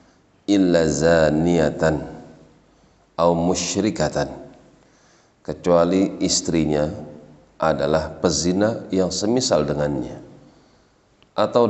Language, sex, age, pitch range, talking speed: Indonesian, male, 40-59, 80-95 Hz, 60 wpm